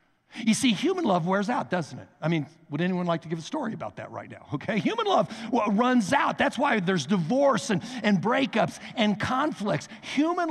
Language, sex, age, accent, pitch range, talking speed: English, male, 60-79, American, 155-235 Hz, 205 wpm